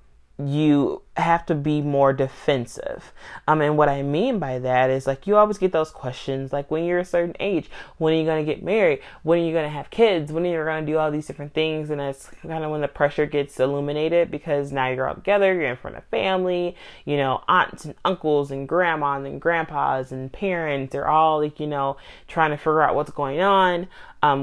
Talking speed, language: 230 wpm, English